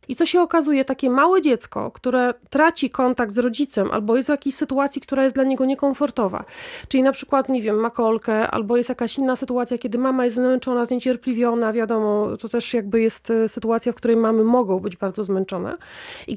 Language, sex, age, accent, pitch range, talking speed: Polish, female, 30-49, native, 240-285 Hz, 195 wpm